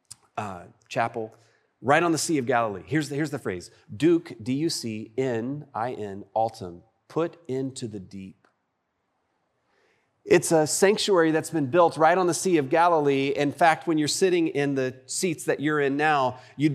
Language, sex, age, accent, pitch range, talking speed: English, male, 30-49, American, 120-165 Hz, 160 wpm